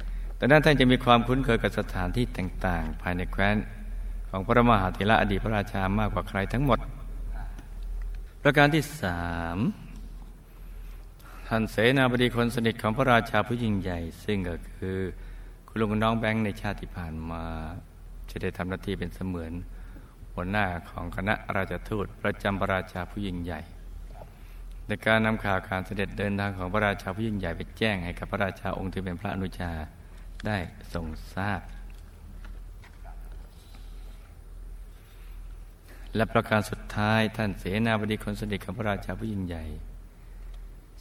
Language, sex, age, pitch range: Thai, male, 60-79, 85-105 Hz